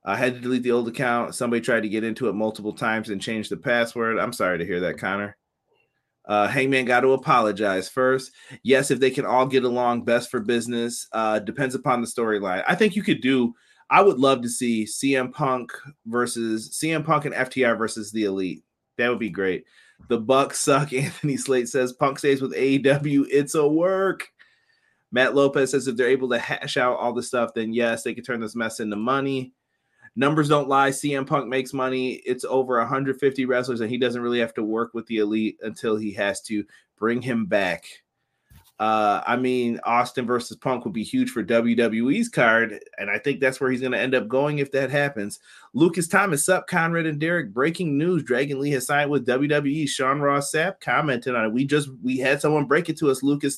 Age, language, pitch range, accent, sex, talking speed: 30-49, English, 115-140 Hz, American, male, 210 wpm